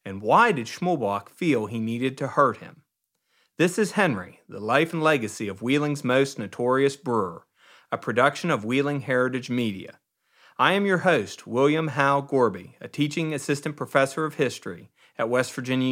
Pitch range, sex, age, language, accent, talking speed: 130-175 Hz, male, 40-59, English, American, 165 wpm